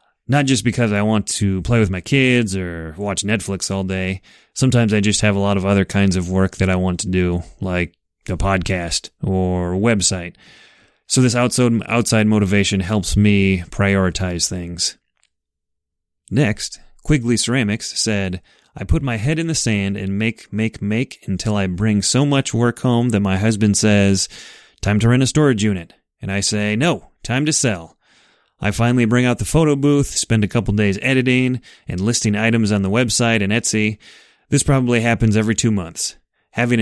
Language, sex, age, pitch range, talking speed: English, male, 30-49, 95-120 Hz, 185 wpm